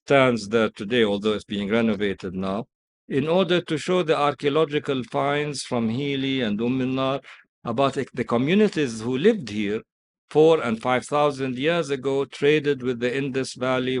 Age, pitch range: 50-69, 120-155 Hz